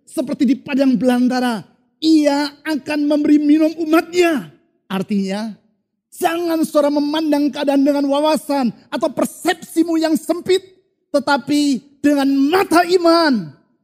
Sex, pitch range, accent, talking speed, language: male, 245-325 Hz, native, 105 wpm, Indonesian